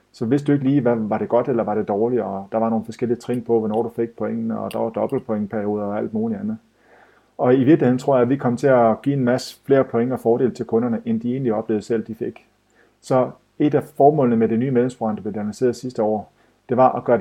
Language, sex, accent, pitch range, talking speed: Danish, male, native, 110-125 Hz, 260 wpm